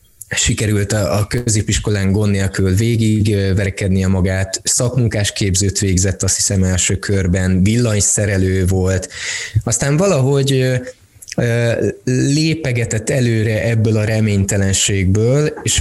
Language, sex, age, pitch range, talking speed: Hungarian, male, 20-39, 95-120 Hz, 95 wpm